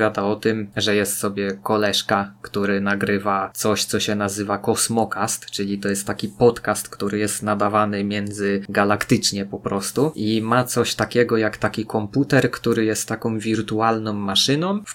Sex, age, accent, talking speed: male, 20-39, native, 150 wpm